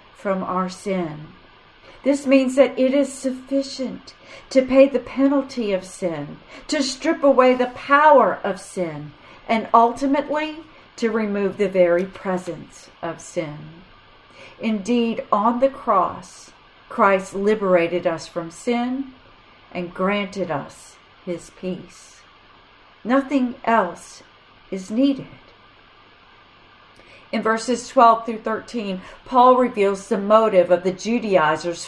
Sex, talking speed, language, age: female, 115 wpm, English, 40-59